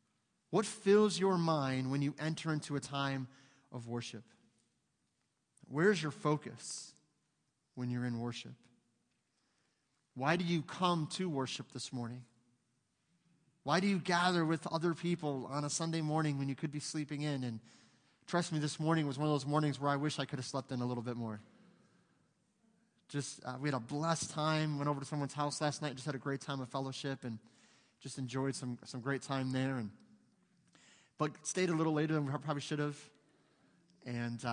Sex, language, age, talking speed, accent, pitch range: male, English, 30-49, 185 wpm, American, 130-165 Hz